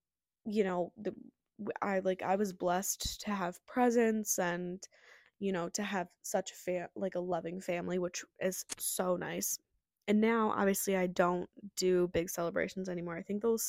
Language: English